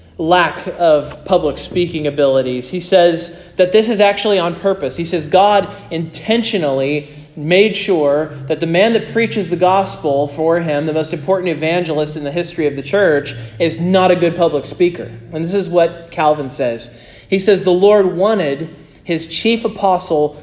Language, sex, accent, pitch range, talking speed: English, male, American, 150-195 Hz, 170 wpm